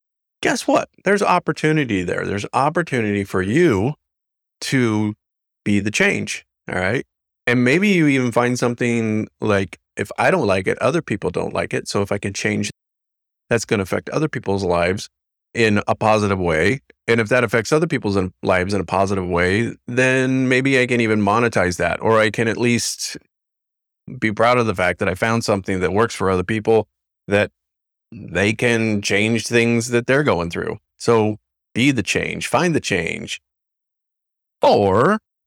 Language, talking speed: English, 175 wpm